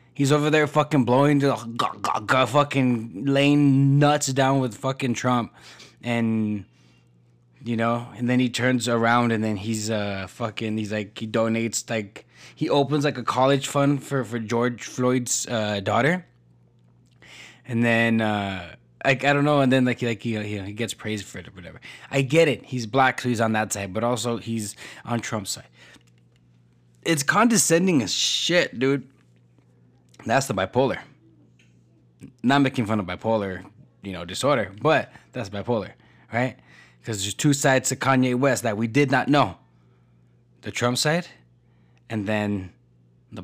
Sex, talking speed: male, 160 wpm